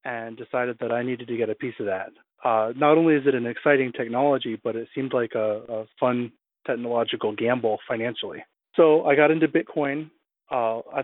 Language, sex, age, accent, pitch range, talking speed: English, male, 30-49, American, 115-145 Hz, 195 wpm